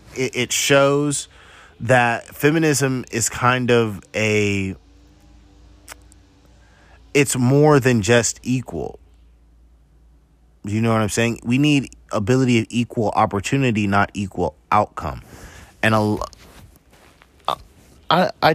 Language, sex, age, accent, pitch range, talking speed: English, male, 30-49, American, 90-115 Hz, 100 wpm